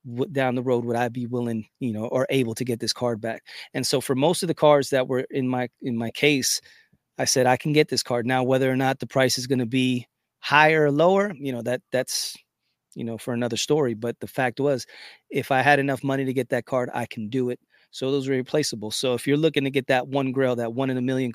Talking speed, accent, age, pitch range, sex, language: 265 wpm, American, 30-49, 120-135 Hz, male, English